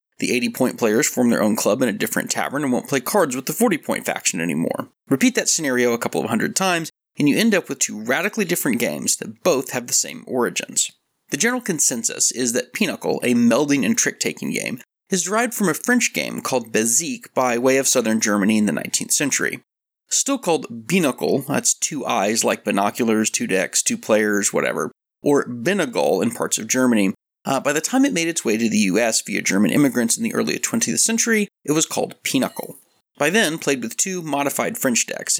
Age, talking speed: 30-49, 205 wpm